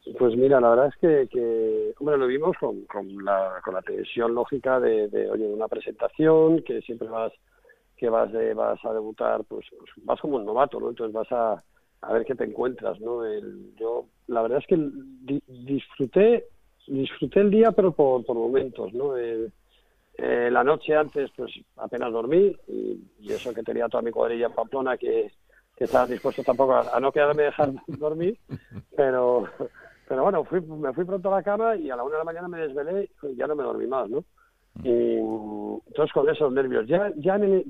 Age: 40-59